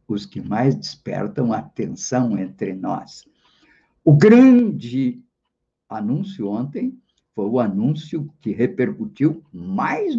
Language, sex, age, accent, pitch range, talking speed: Portuguese, male, 50-69, Brazilian, 120-170 Hz, 105 wpm